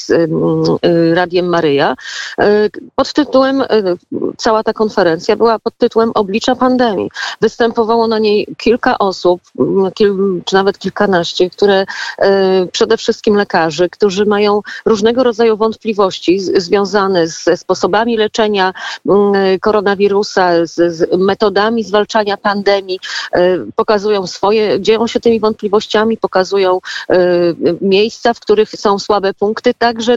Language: Polish